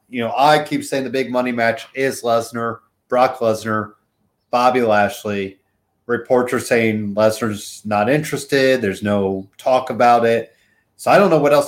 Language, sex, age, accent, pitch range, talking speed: English, male, 30-49, American, 105-125 Hz, 165 wpm